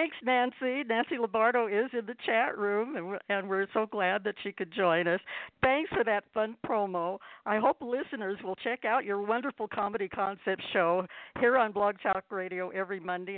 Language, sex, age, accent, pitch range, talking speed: English, female, 60-79, American, 185-235 Hz, 185 wpm